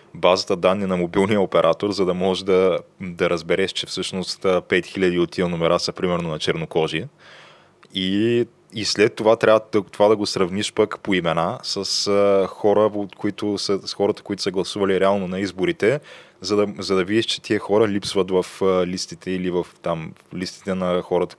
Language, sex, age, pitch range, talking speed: Bulgarian, male, 20-39, 95-105 Hz, 190 wpm